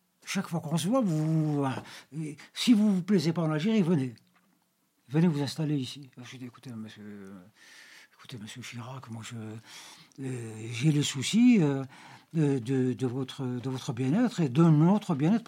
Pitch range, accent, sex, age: 130-185 Hz, French, male, 60-79